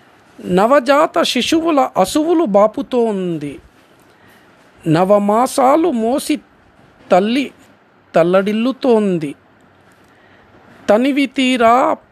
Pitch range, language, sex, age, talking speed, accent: 205-285 Hz, Telugu, male, 50-69, 50 wpm, native